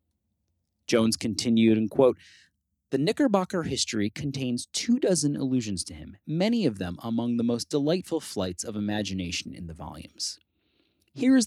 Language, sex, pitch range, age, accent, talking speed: English, male, 105-160 Hz, 30-49, American, 145 wpm